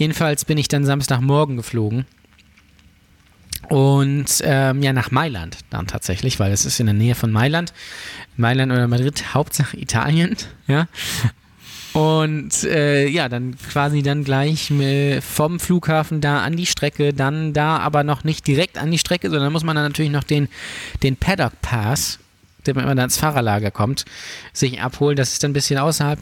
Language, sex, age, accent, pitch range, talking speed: German, male, 20-39, German, 125-150 Hz, 165 wpm